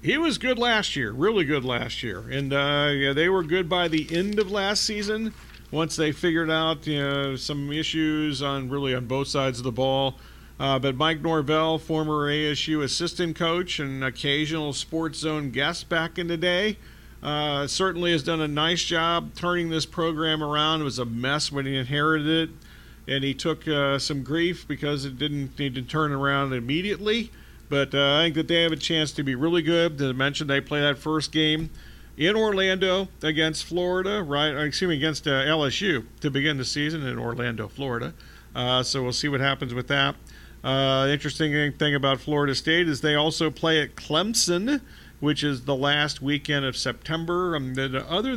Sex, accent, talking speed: male, American, 190 wpm